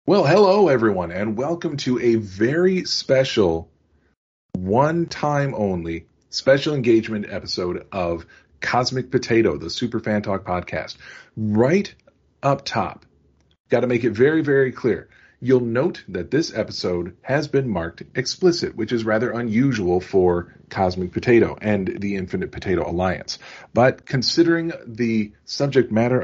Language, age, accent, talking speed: English, 40-59, American, 130 wpm